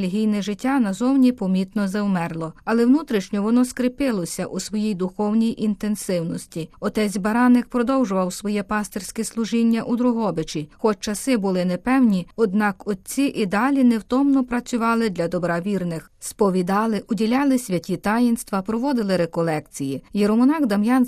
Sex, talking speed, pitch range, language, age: female, 115 wpm, 185-240 Hz, Ukrainian, 30-49